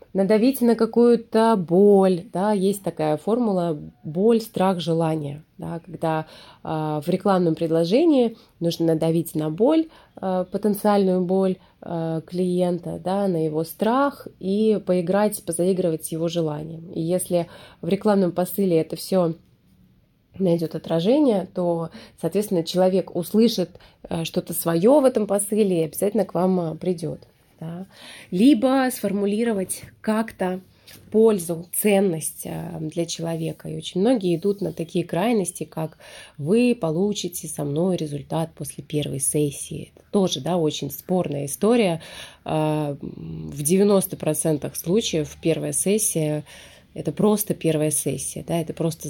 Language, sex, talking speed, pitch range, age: Russian, female, 125 wpm, 160-200 Hz, 20-39